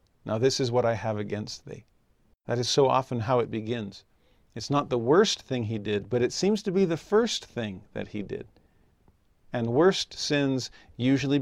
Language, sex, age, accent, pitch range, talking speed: English, male, 50-69, American, 110-140 Hz, 195 wpm